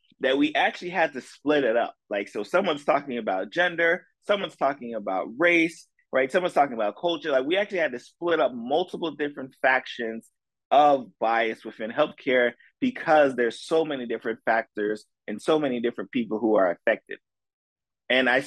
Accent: American